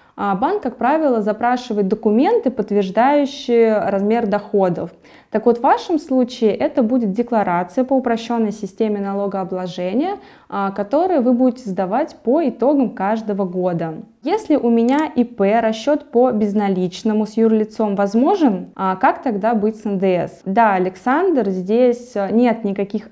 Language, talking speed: Russian, 125 wpm